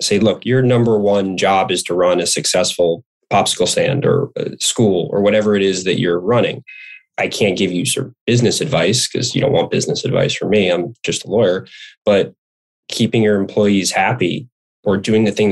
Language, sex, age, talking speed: English, male, 20-39, 190 wpm